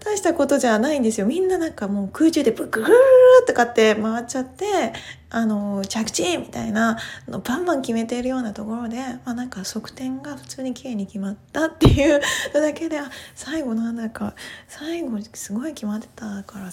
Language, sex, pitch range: Japanese, female, 225-320 Hz